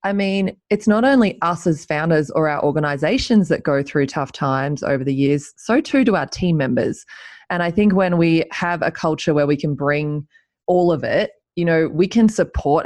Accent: Australian